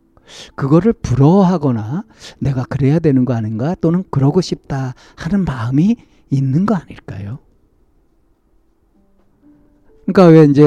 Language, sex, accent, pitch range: Korean, male, native, 110-145 Hz